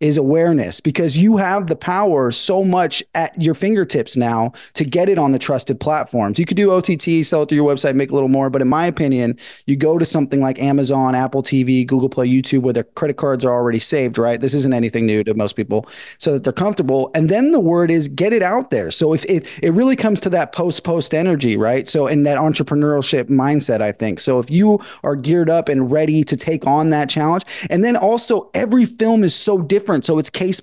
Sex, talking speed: male, 235 wpm